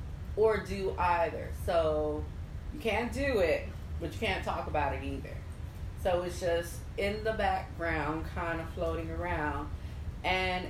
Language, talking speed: English, 145 wpm